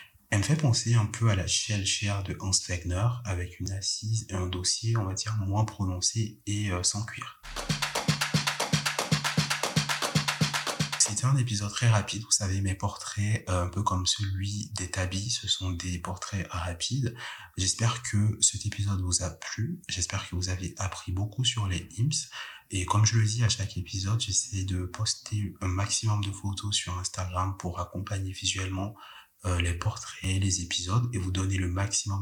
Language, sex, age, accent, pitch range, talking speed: French, male, 30-49, French, 90-110 Hz, 170 wpm